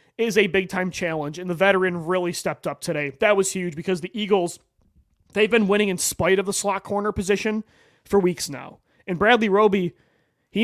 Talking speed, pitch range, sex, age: 190 wpm, 170-210 Hz, male, 30-49